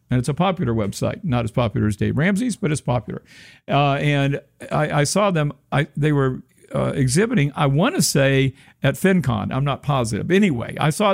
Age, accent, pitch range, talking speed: 50-69, American, 125-165 Hz, 200 wpm